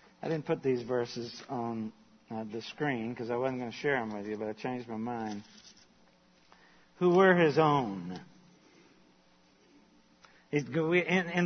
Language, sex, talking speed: English, male, 150 wpm